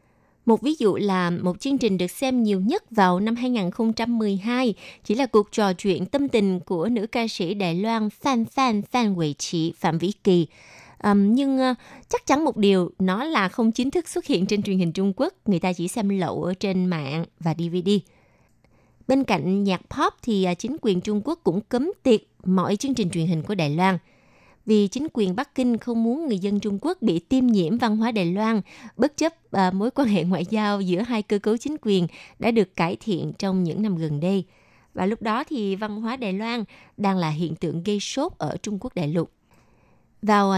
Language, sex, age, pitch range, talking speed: Vietnamese, female, 20-39, 185-240 Hz, 210 wpm